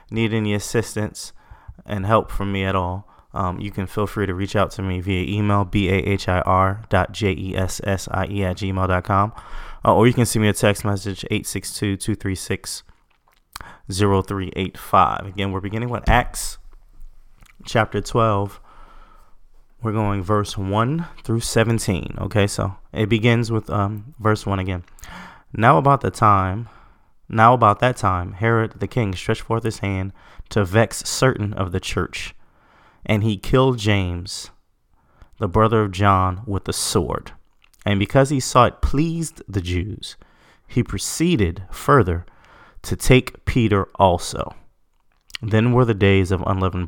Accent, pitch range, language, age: American, 95-115 Hz, English, 20-39